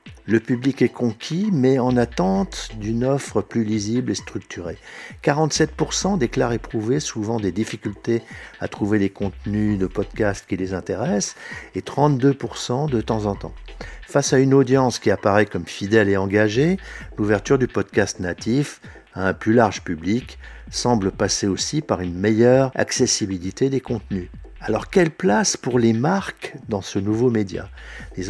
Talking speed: 155 wpm